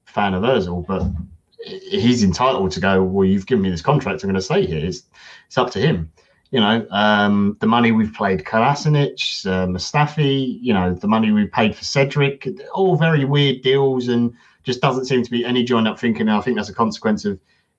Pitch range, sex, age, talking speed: 95-125 Hz, male, 30-49, 215 wpm